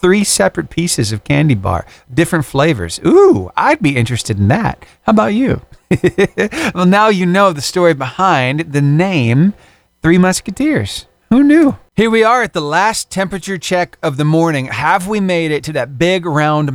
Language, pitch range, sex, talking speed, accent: English, 125-190 Hz, male, 175 wpm, American